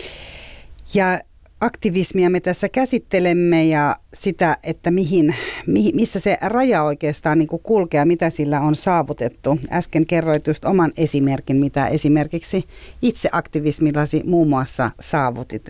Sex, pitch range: female, 140-180 Hz